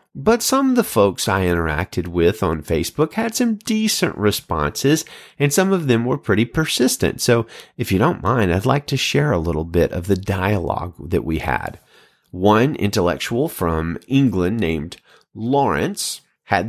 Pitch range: 95-145 Hz